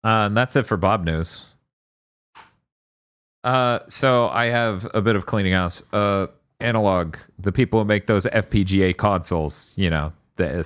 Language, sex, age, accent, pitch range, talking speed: English, male, 30-49, American, 80-120 Hz, 160 wpm